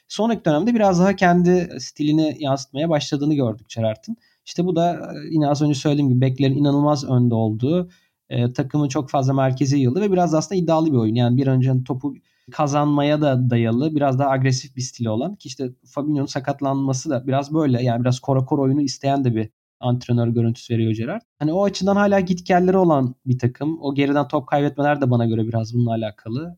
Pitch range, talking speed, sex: 125-160 Hz, 195 wpm, male